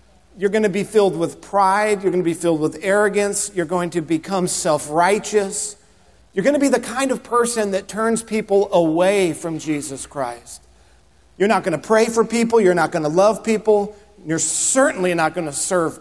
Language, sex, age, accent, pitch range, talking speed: English, male, 50-69, American, 125-180 Hz, 200 wpm